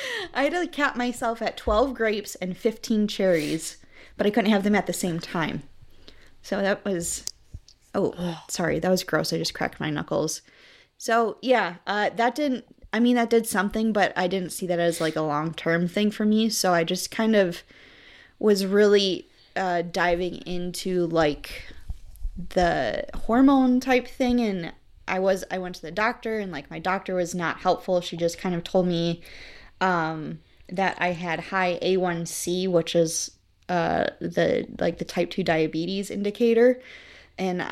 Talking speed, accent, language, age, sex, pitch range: 175 wpm, American, English, 20-39, female, 170-210 Hz